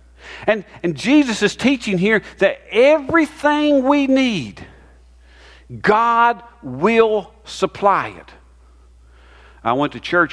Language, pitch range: English, 125-205 Hz